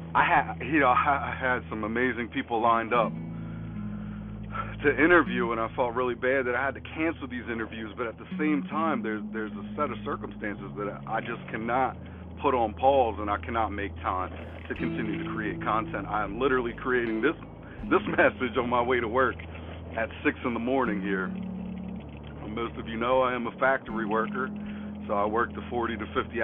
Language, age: English, 40-59